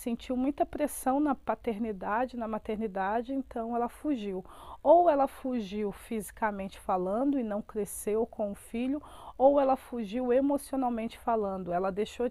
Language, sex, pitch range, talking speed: Portuguese, female, 210-240 Hz, 135 wpm